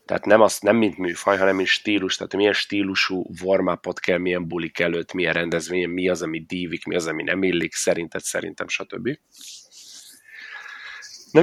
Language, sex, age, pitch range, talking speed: Hungarian, male, 30-49, 90-110 Hz, 170 wpm